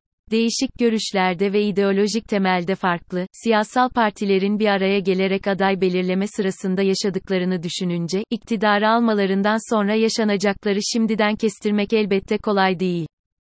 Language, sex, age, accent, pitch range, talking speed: Turkish, female, 30-49, native, 190-220 Hz, 110 wpm